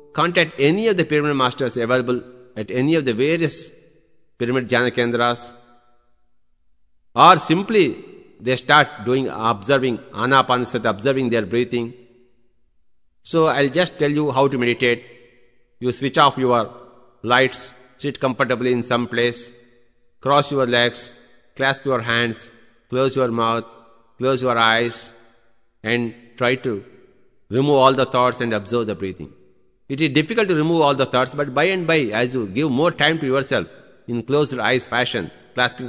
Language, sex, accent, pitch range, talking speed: English, male, Indian, 115-140 Hz, 150 wpm